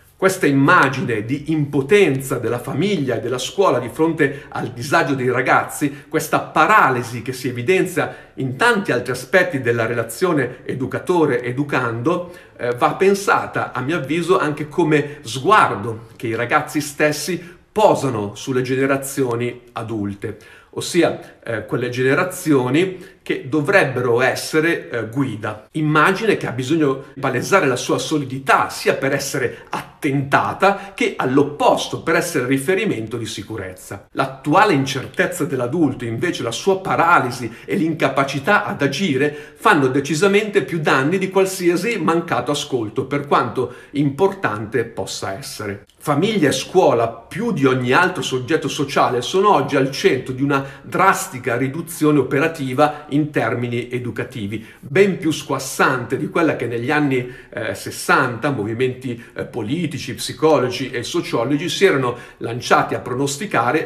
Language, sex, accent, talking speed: Italian, male, native, 130 wpm